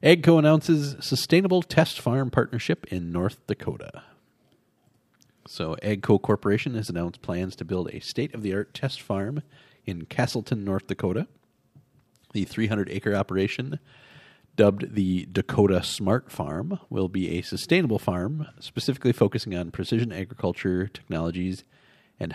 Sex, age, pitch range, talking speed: male, 40-59, 95-130 Hz, 120 wpm